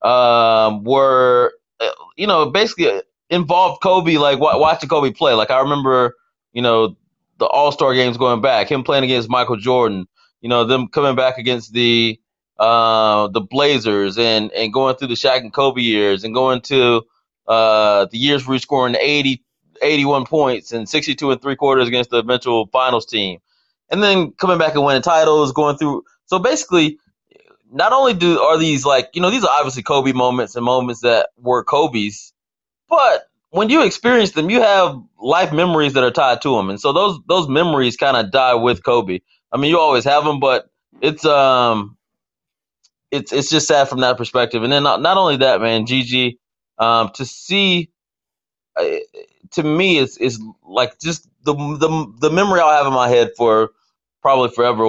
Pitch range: 120-155 Hz